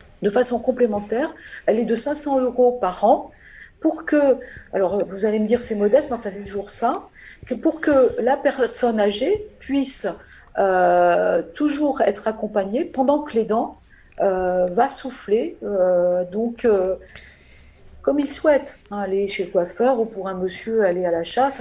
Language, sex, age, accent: French, female, 50-69, French